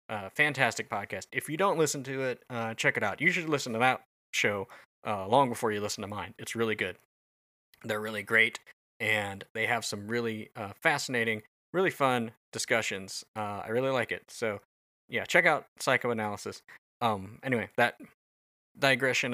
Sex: male